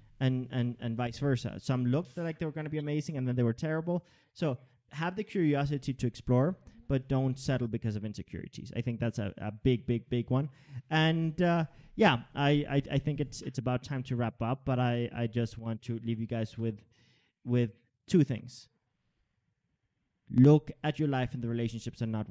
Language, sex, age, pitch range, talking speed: English, male, 30-49, 115-135 Hz, 200 wpm